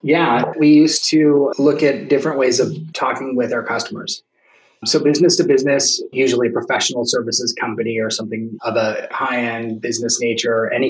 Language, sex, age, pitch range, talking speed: English, male, 30-49, 120-145 Hz, 160 wpm